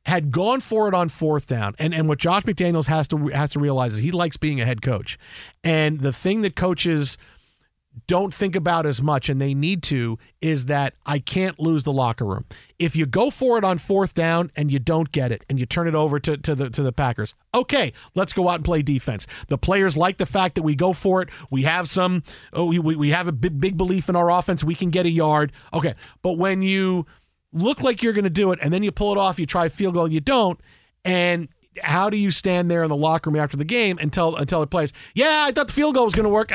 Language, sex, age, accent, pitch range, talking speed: English, male, 40-59, American, 150-200 Hz, 255 wpm